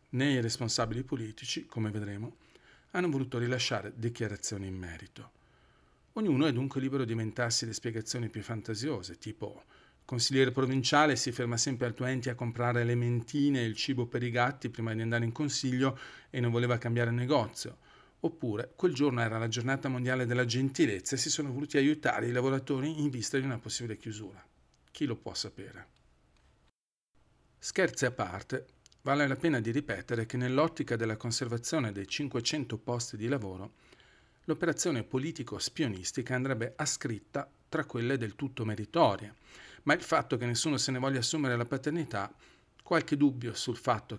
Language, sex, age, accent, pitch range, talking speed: Italian, male, 40-59, native, 110-140 Hz, 160 wpm